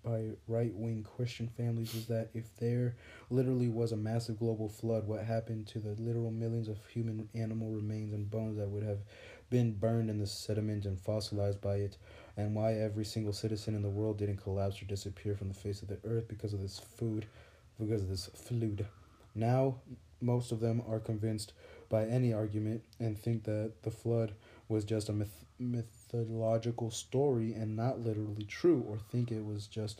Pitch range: 100-115 Hz